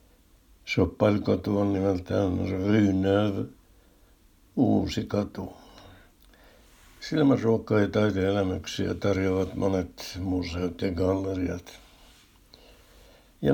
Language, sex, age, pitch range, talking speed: Finnish, male, 60-79, 90-105 Hz, 65 wpm